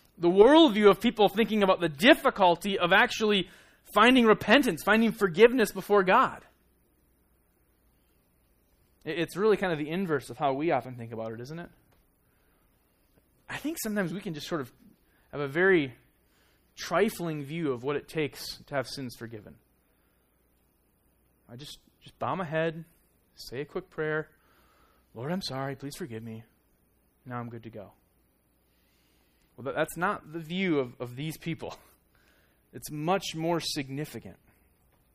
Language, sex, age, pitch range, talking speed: English, male, 20-39, 125-170 Hz, 145 wpm